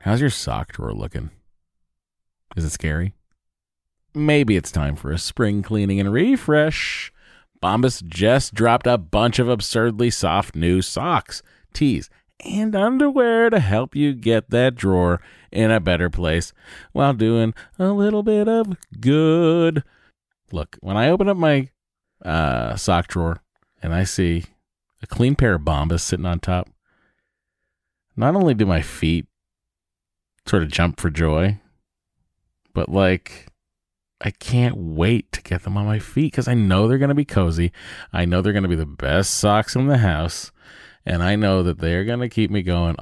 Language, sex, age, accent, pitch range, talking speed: English, male, 40-59, American, 85-120 Hz, 165 wpm